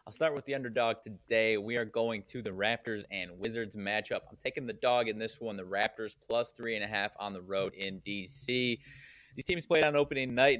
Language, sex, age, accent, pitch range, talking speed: English, male, 20-39, American, 100-120 Hz, 225 wpm